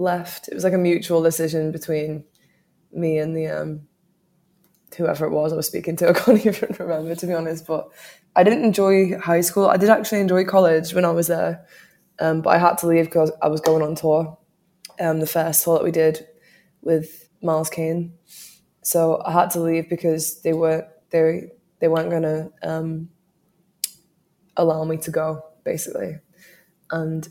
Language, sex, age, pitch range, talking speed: English, female, 20-39, 160-180 Hz, 180 wpm